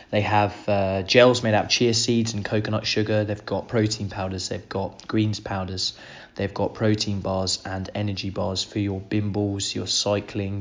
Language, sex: English, male